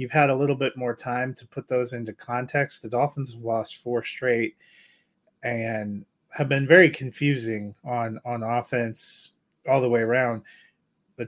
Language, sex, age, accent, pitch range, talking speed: English, male, 30-49, American, 120-145 Hz, 165 wpm